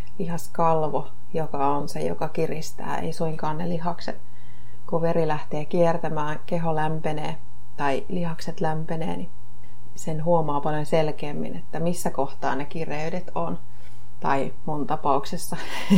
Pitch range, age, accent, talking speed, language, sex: 140-170 Hz, 30-49, native, 125 wpm, Finnish, female